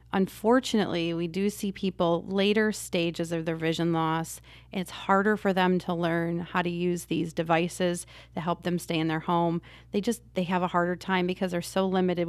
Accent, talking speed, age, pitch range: American, 195 wpm, 30-49, 175-200 Hz